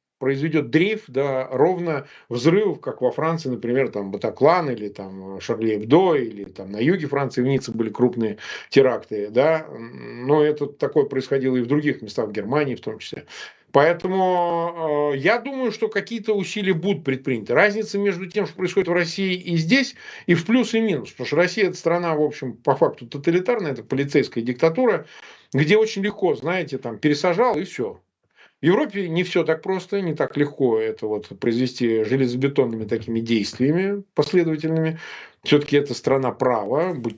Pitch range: 125-180 Hz